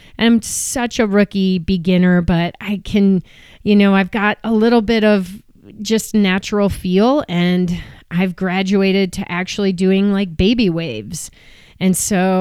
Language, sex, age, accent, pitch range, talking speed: English, female, 30-49, American, 180-210 Hz, 145 wpm